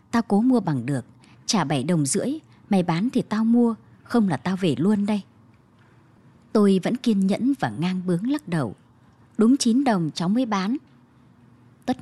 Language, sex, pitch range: Vietnamese, male, 170-245 Hz